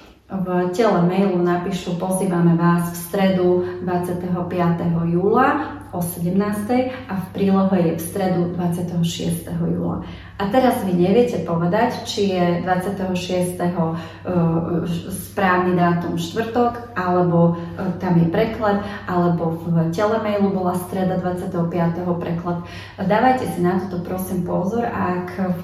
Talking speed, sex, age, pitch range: 115 wpm, female, 30-49, 170-190 Hz